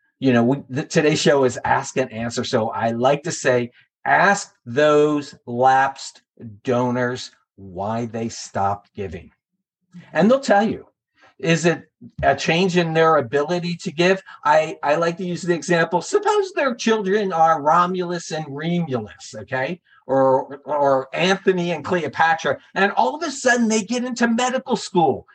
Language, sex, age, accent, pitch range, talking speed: English, male, 50-69, American, 130-200 Hz, 150 wpm